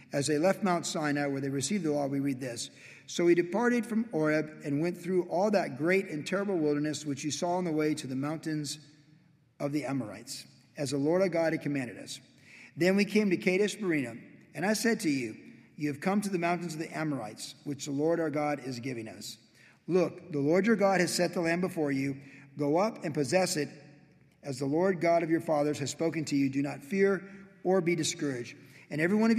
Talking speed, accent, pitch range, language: 230 wpm, American, 145-175 Hz, English